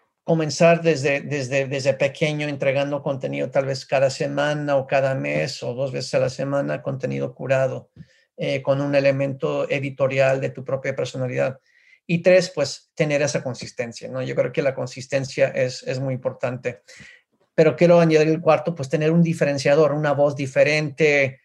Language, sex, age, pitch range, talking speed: Spanish, male, 40-59, 135-170 Hz, 165 wpm